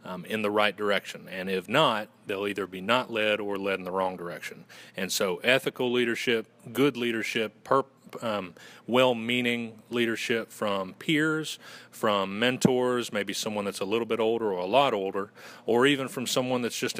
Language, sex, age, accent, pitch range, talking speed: English, male, 40-59, American, 100-125 Hz, 175 wpm